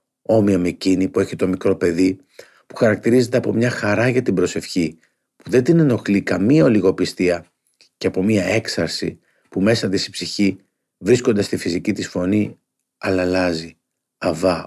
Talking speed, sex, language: 160 wpm, male, Greek